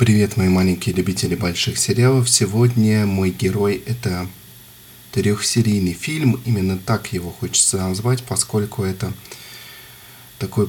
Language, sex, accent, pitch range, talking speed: Russian, male, native, 95-120 Hz, 110 wpm